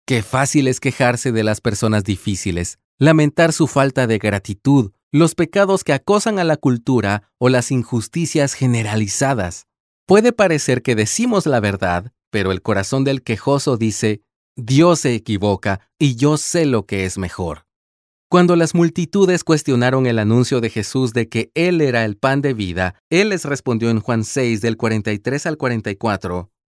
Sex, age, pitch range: male, 30-49, 105-150 Hz